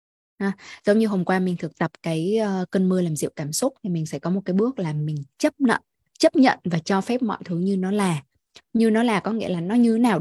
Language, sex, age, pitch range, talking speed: Vietnamese, female, 20-39, 180-225 Hz, 270 wpm